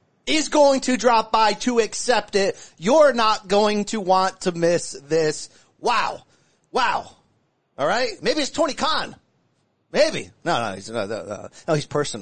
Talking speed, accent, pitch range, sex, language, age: 160 wpm, American, 145-215 Hz, male, English, 30-49